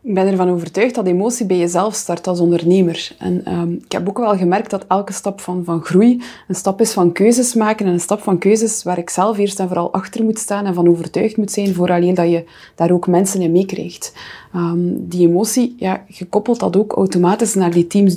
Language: Dutch